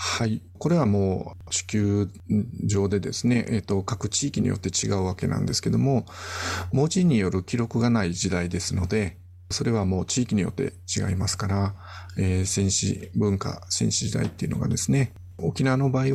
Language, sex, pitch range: Japanese, male, 90-120 Hz